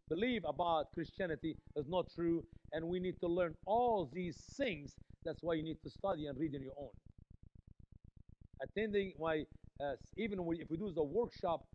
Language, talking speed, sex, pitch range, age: English, 175 wpm, male, 145-215 Hz, 50-69